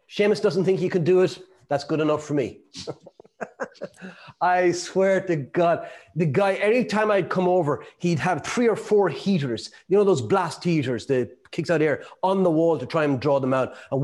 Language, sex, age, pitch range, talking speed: English, male, 30-49, 130-180 Hz, 200 wpm